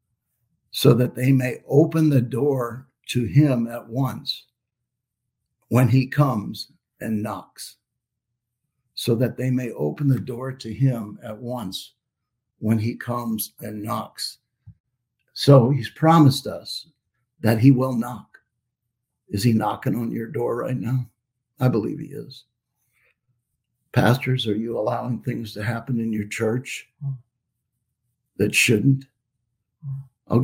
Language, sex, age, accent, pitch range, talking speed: English, male, 60-79, American, 115-130 Hz, 130 wpm